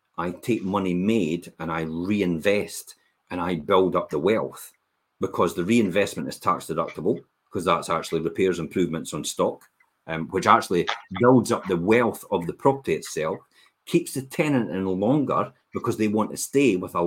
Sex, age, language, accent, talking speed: male, 40-59, English, British, 170 wpm